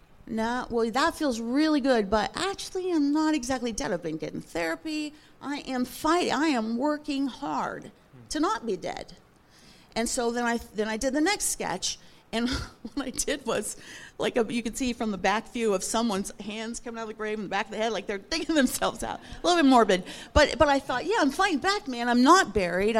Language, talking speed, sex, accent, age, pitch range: English, 225 wpm, female, American, 50-69, 205-270 Hz